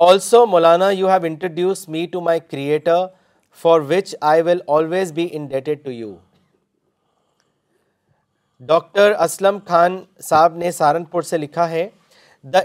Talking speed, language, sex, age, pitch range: 135 wpm, Urdu, male, 40-59, 155-185 Hz